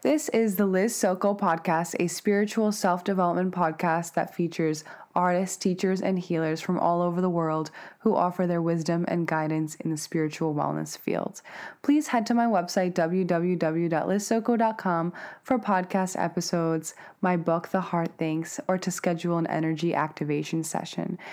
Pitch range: 170-215 Hz